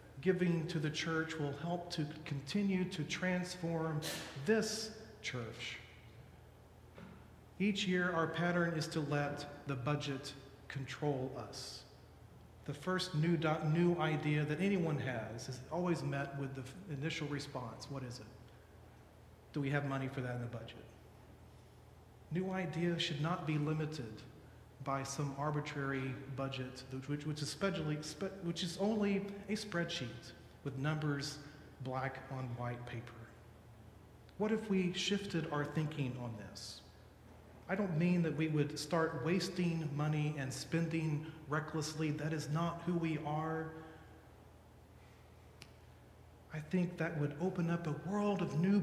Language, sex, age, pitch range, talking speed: English, male, 40-59, 135-170 Hz, 135 wpm